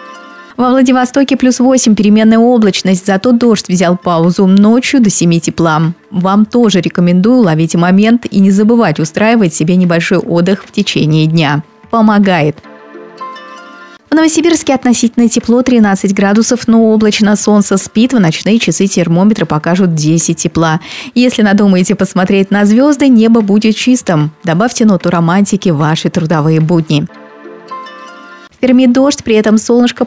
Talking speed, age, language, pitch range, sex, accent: 135 wpm, 20-39, Russian, 175-235 Hz, female, native